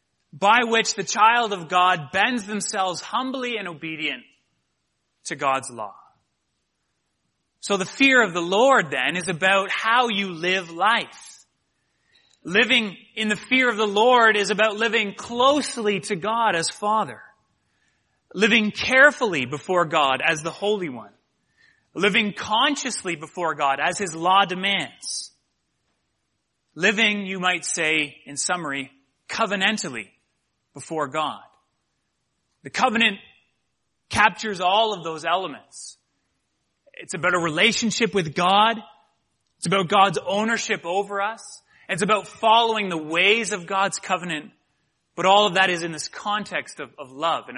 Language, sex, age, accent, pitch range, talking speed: English, male, 30-49, American, 160-215 Hz, 135 wpm